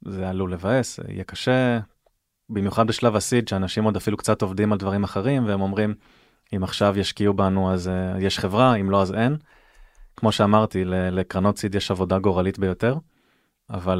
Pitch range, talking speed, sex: 95-115 Hz, 165 wpm, male